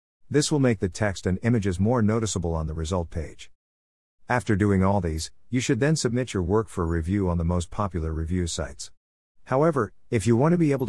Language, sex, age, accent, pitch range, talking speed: English, male, 50-69, American, 85-115 Hz, 210 wpm